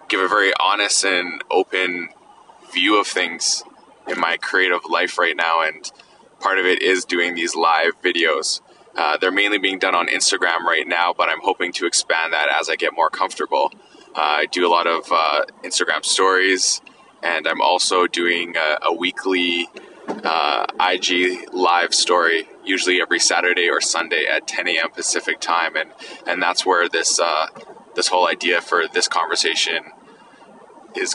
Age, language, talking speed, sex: 20-39, English, 170 wpm, male